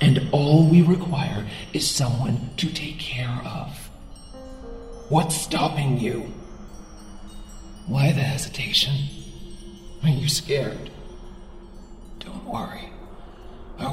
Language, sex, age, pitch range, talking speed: English, male, 40-59, 95-145 Hz, 95 wpm